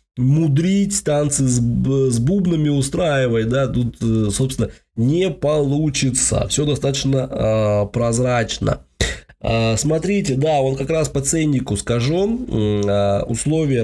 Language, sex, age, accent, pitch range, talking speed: Russian, male, 20-39, native, 110-145 Hz, 110 wpm